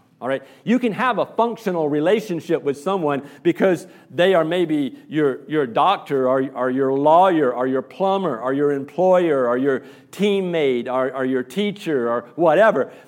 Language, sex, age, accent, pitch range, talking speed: English, male, 50-69, American, 135-185 Hz, 165 wpm